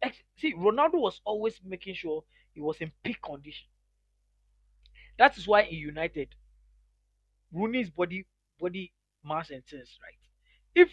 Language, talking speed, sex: English, 130 wpm, male